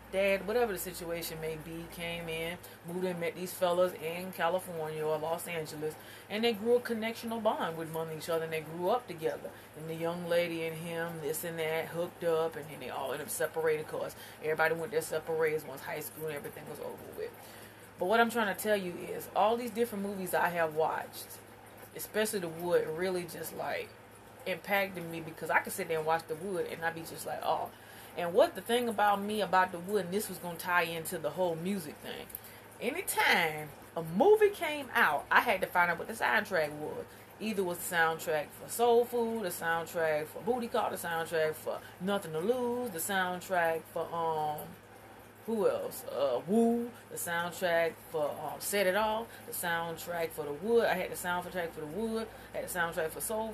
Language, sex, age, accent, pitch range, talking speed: English, female, 30-49, American, 160-210 Hz, 210 wpm